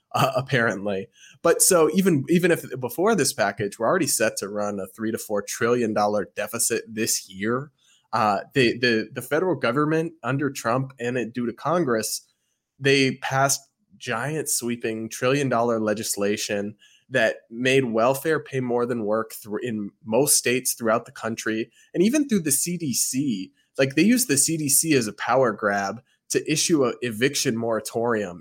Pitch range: 110-135 Hz